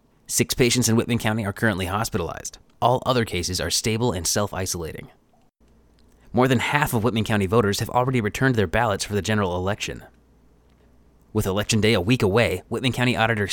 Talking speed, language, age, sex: 175 wpm, English, 20-39, male